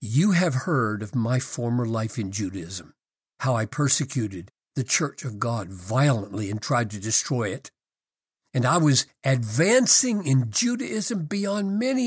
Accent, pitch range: American, 120-180 Hz